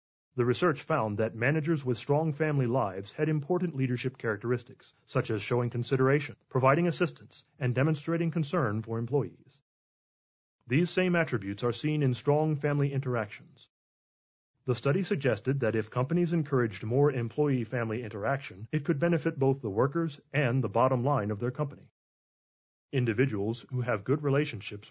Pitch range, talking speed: 115-150 Hz, 145 wpm